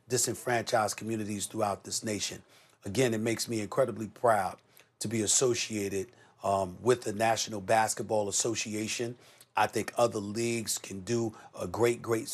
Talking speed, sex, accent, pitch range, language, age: 140 wpm, male, American, 100-115 Hz, English, 40-59